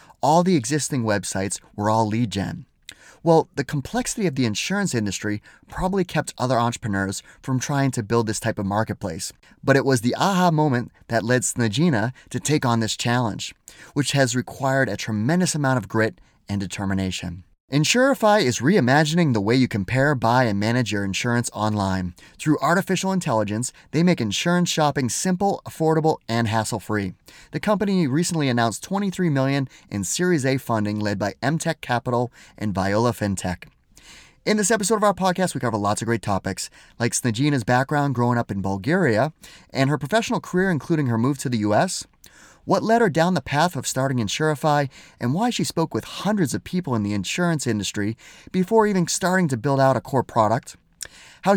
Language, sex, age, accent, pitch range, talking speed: English, male, 30-49, American, 110-170 Hz, 175 wpm